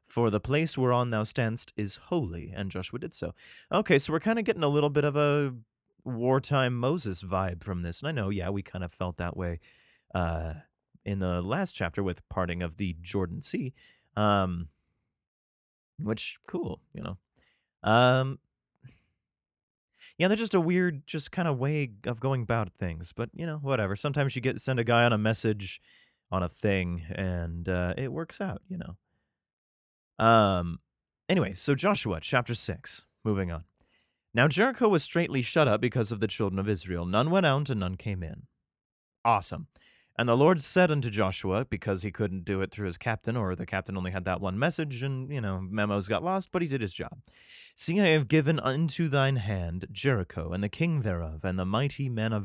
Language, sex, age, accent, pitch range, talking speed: English, male, 30-49, American, 95-135 Hz, 190 wpm